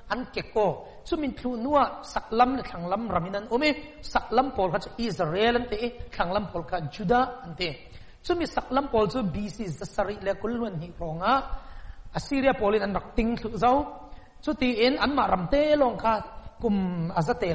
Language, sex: English, male